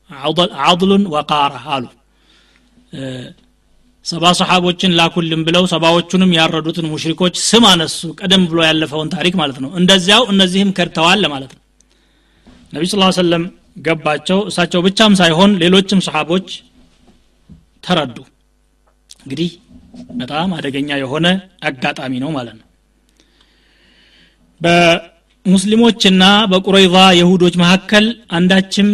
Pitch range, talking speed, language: 160-195 Hz, 100 wpm, Amharic